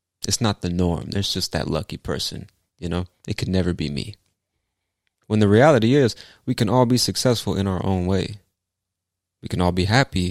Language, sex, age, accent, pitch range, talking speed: English, male, 20-39, American, 90-105 Hz, 200 wpm